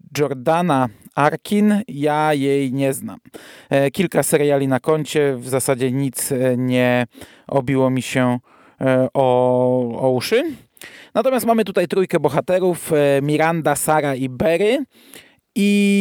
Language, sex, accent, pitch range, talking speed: Polish, male, native, 130-160 Hz, 110 wpm